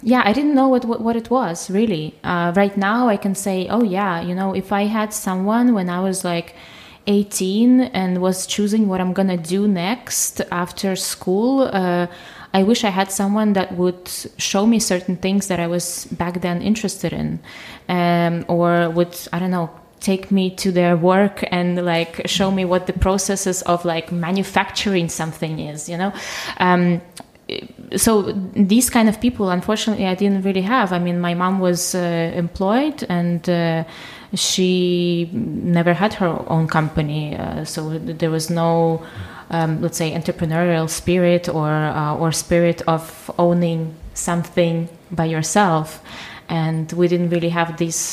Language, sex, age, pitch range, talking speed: German, female, 20-39, 170-195 Hz, 165 wpm